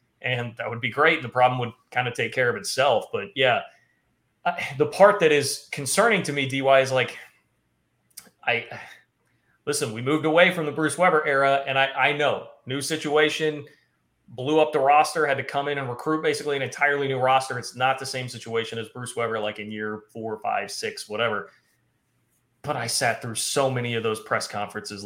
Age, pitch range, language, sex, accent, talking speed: 30-49, 115-140 Hz, English, male, American, 200 wpm